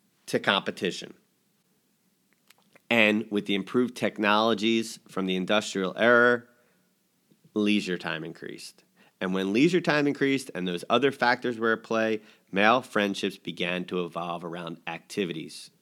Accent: American